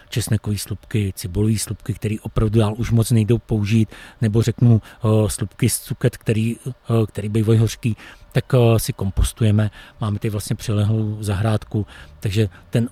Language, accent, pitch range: Czech, native, 105-115 Hz